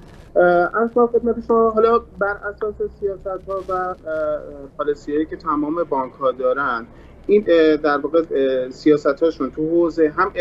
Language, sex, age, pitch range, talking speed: Persian, male, 30-49, 145-190 Hz, 115 wpm